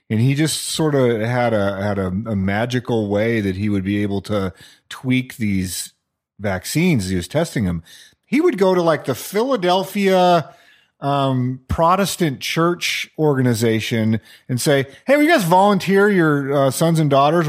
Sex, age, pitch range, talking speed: male, 30-49, 120-165 Hz, 165 wpm